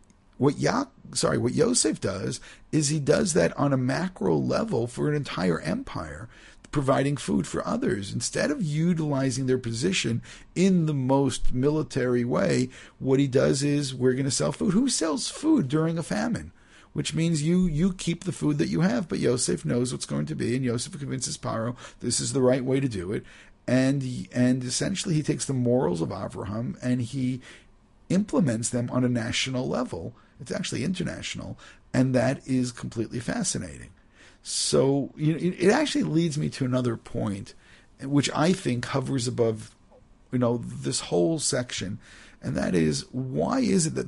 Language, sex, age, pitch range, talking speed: English, male, 50-69, 120-155 Hz, 175 wpm